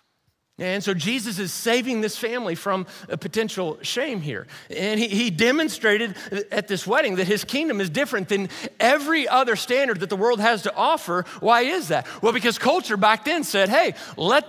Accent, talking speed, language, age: American, 185 wpm, English, 40-59